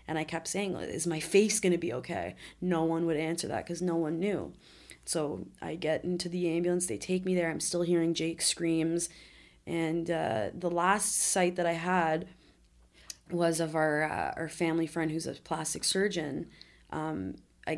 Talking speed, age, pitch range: 185 wpm, 20-39, 160-175 Hz